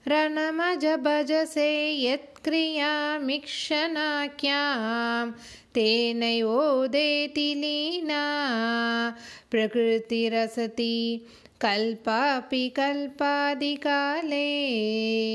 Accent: native